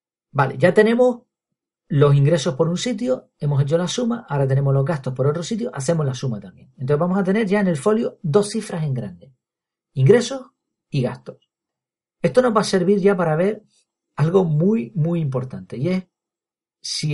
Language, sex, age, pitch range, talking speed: Spanish, male, 40-59, 135-195 Hz, 185 wpm